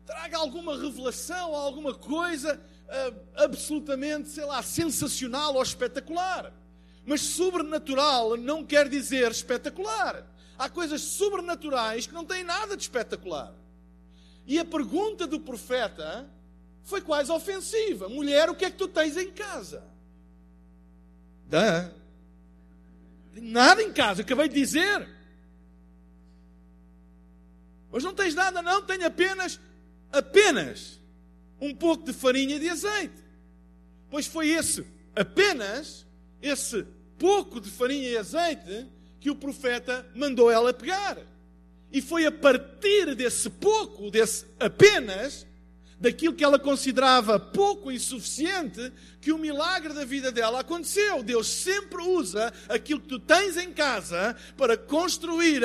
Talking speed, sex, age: 125 wpm, male, 50-69